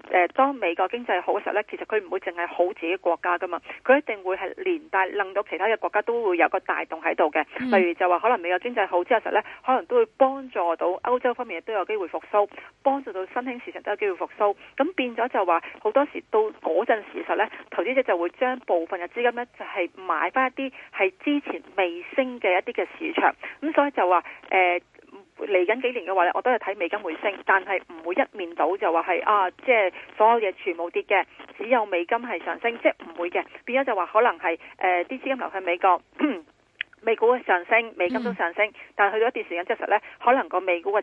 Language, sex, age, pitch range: Chinese, female, 30-49, 180-245 Hz